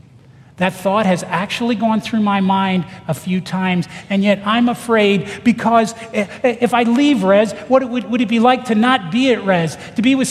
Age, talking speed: 40-59, 190 wpm